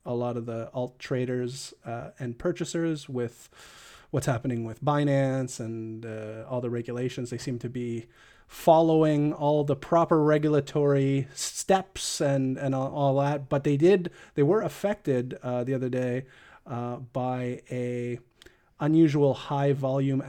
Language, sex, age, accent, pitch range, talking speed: English, male, 30-49, American, 120-145 Hz, 145 wpm